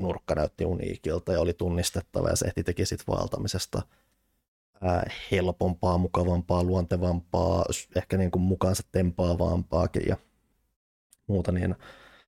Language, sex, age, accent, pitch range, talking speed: Finnish, male, 20-39, native, 90-105 Hz, 105 wpm